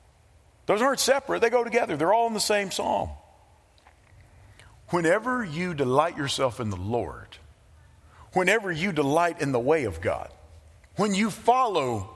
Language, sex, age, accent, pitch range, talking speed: English, male, 50-69, American, 140-225 Hz, 150 wpm